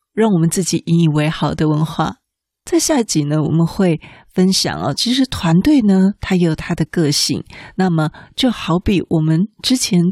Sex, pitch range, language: female, 170-220 Hz, Chinese